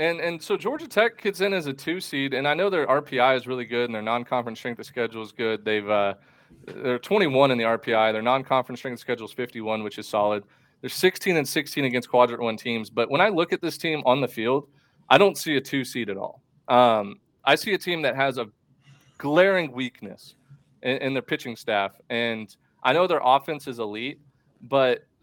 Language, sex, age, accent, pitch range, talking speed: English, male, 30-49, American, 120-160 Hz, 220 wpm